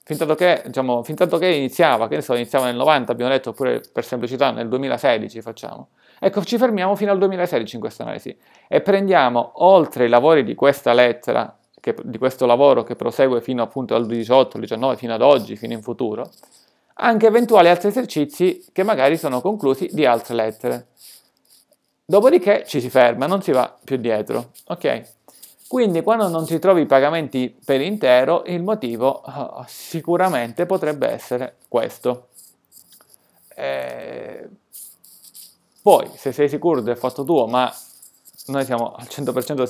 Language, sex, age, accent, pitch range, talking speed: Italian, male, 40-59, native, 120-155 Hz, 150 wpm